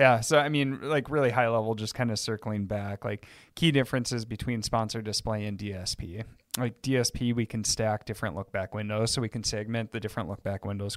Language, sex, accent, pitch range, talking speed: English, male, American, 110-125 Hz, 200 wpm